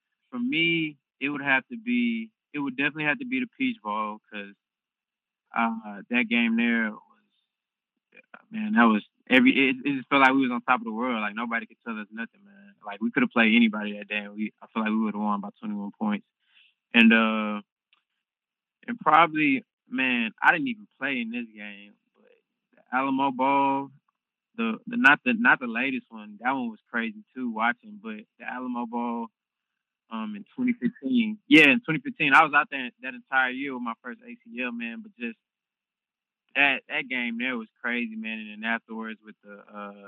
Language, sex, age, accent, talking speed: English, male, 20-39, American, 200 wpm